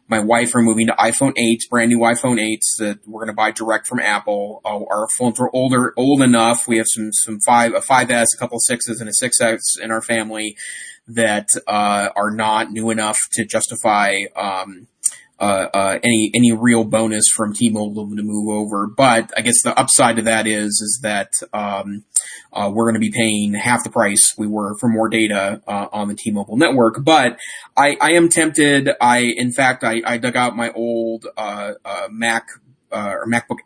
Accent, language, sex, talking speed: American, English, male, 200 wpm